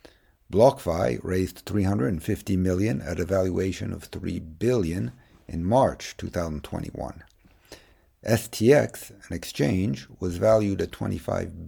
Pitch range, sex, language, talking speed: 90-110 Hz, male, English, 105 wpm